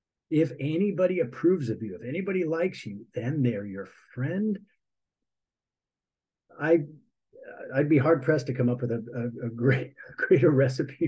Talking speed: 155 wpm